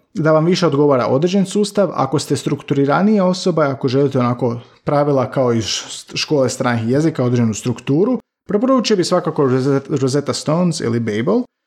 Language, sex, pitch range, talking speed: Croatian, male, 125-180 Hz, 145 wpm